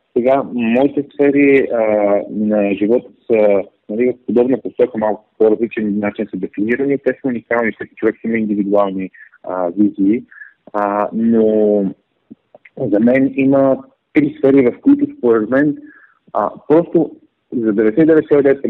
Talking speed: 135 wpm